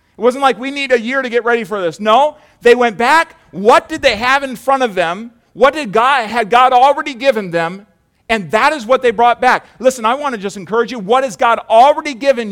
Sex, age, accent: male, 40-59, American